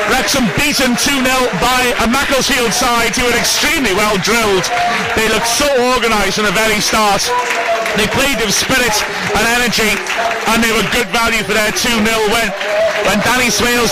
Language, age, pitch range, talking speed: English, 30-49, 205-235 Hz, 165 wpm